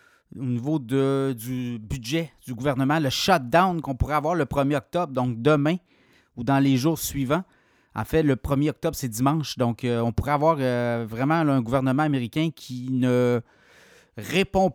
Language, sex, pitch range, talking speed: French, male, 125-160 Hz, 175 wpm